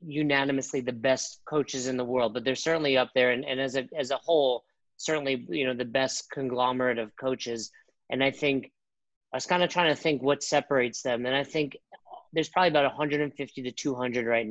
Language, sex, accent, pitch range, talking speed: English, male, American, 130-150 Hz, 205 wpm